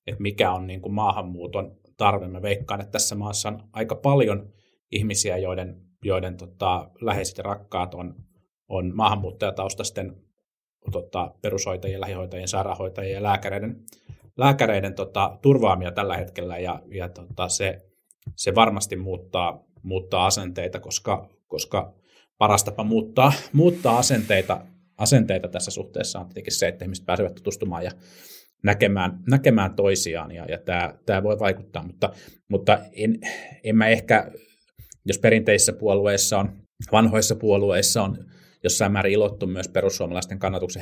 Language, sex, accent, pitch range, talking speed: Finnish, male, native, 95-110 Hz, 130 wpm